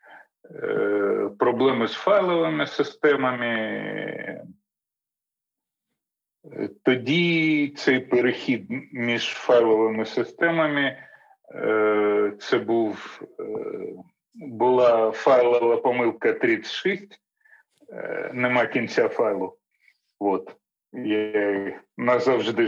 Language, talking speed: Ukrainian, 70 wpm